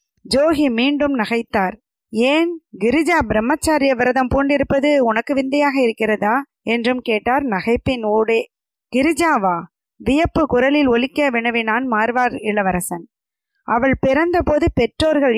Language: Tamil